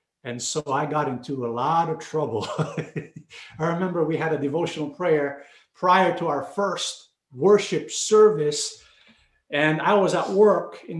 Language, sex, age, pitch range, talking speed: English, male, 50-69, 150-210 Hz, 155 wpm